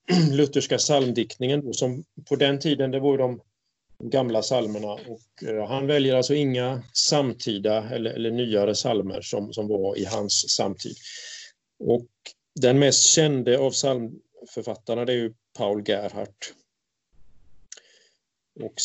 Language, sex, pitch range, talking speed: Swedish, male, 105-135 Hz, 130 wpm